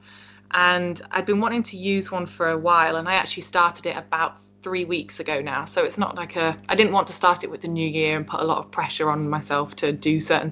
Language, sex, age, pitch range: English, female, 20-39, 155-180 Hz